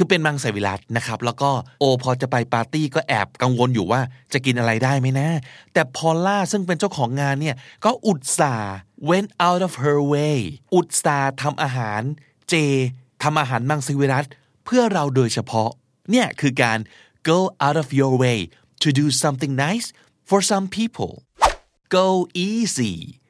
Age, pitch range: 20-39, 120-155 Hz